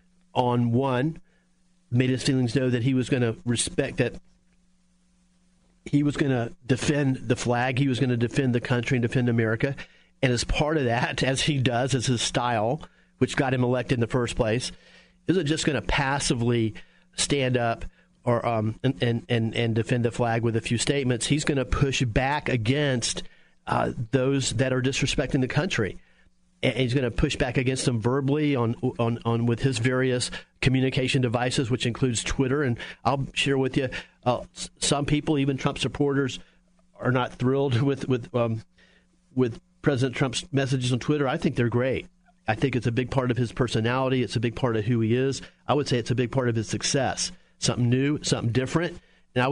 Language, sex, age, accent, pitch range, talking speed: English, male, 40-59, American, 120-140 Hz, 195 wpm